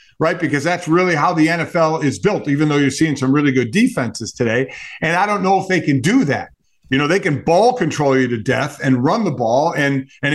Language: English